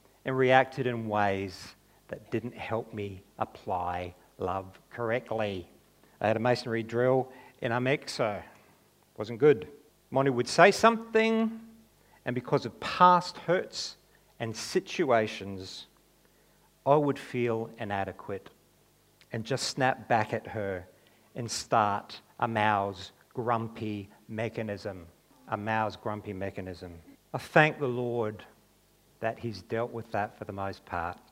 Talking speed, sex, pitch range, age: 125 wpm, male, 100-135 Hz, 50-69